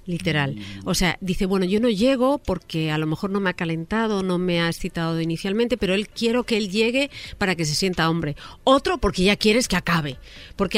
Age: 40-59